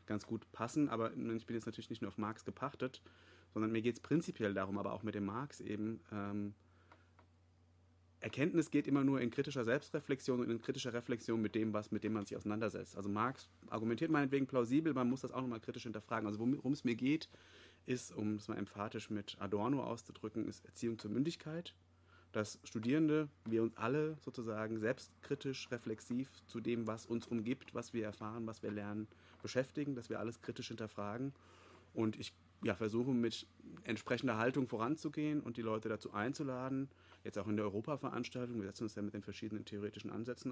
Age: 30-49